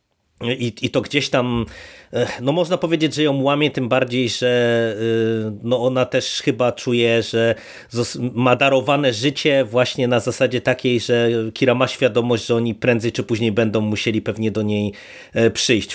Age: 30-49